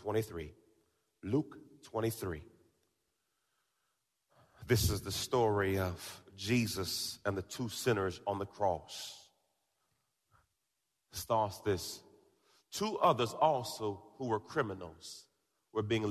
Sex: male